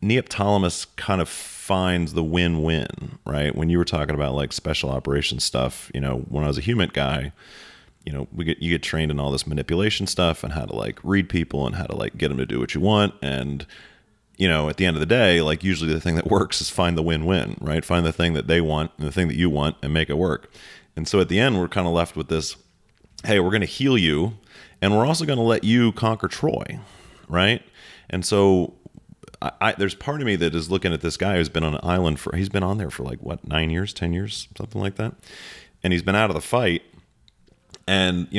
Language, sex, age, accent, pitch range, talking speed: English, male, 30-49, American, 75-95 Hz, 245 wpm